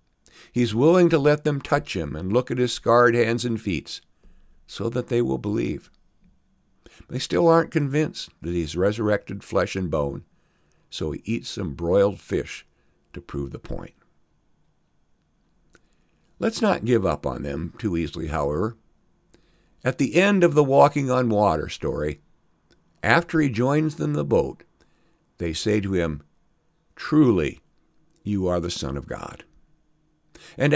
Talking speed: 150 wpm